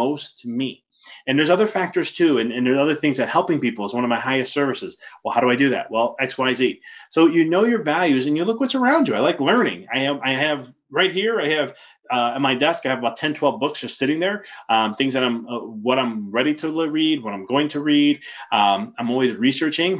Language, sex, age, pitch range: English, male, 20-39, 125-155 Hz